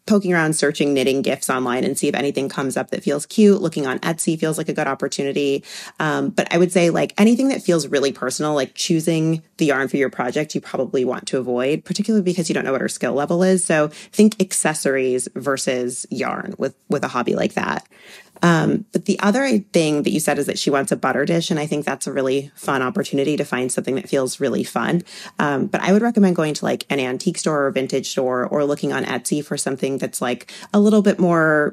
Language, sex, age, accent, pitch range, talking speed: English, female, 30-49, American, 140-185 Hz, 235 wpm